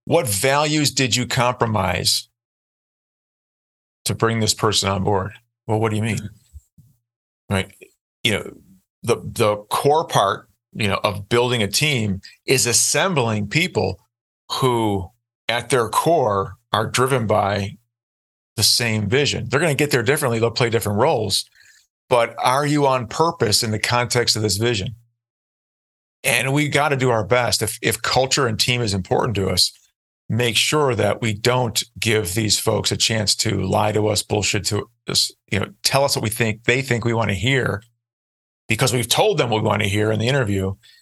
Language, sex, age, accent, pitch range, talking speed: English, male, 40-59, American, 105-125 Hz, 175 wpm